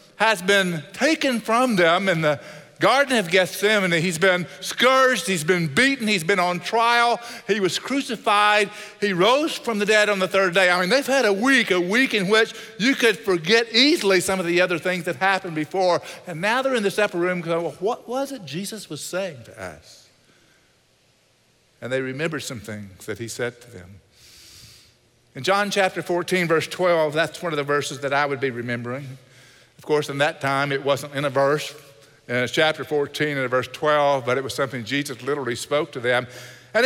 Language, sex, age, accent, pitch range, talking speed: English, male, 50-69, American, 145-210 Hz, 200 wpm